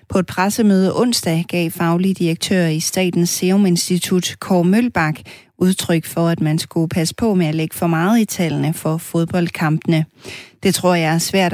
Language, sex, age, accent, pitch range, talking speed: Danish, female, 30-49, native, 155-180 Hz, 175 wpm